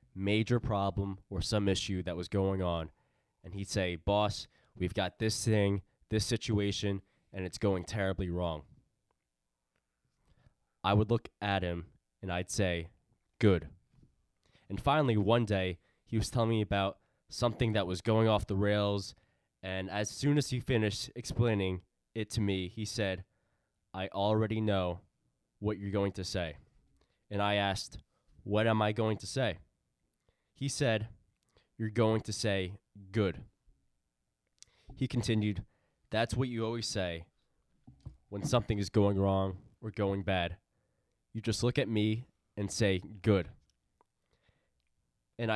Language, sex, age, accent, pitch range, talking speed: English, male, 20-39, American, 95-115 Hz, 145 wpm